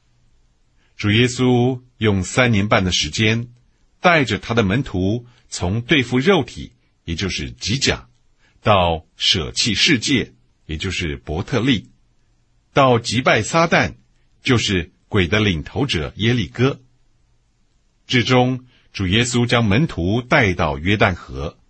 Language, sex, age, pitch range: English, male, 50-69, 85-125 Hz